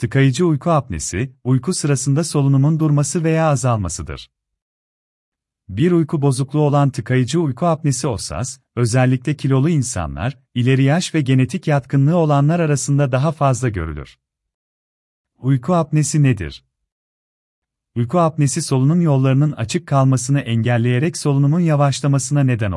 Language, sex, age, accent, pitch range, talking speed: Turkish, male, 40-59, native, 100-150 Hz, 115 wpm